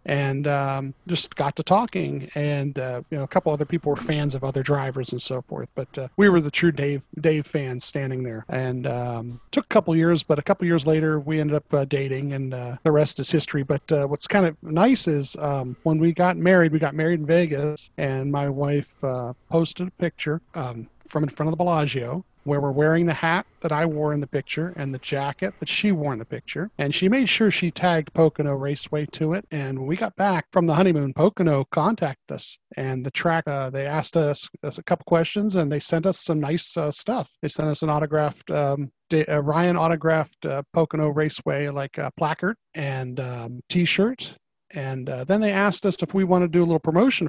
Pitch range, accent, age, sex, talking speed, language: 140-170 Hz, American, 40-59, male, 225 wpm, English